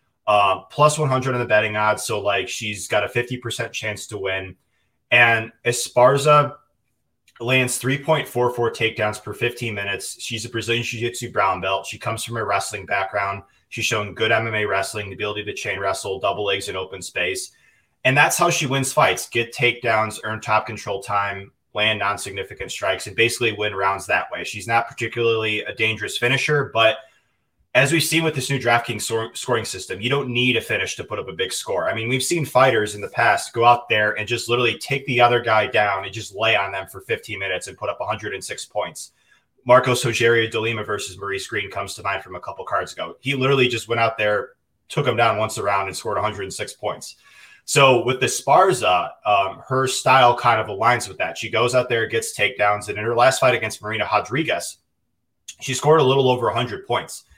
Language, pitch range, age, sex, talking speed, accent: English, 105-125 Hz, 20-39, male, 205 wpm, American